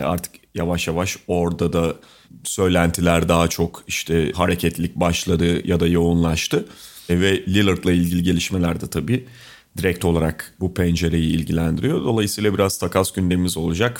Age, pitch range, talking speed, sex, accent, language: 30-49, 85-110 Hz, 130 wpm, male, native, Turkish